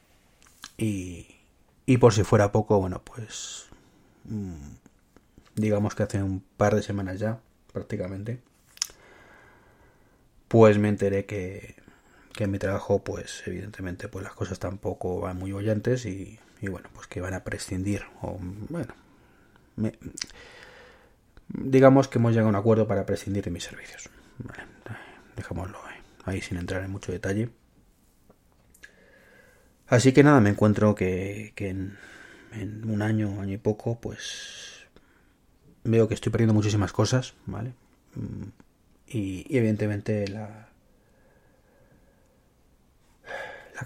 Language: Spanish